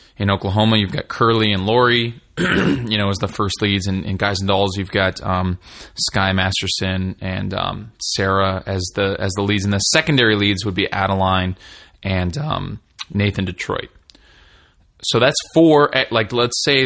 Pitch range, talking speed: 95-115 Hz, 170 wpm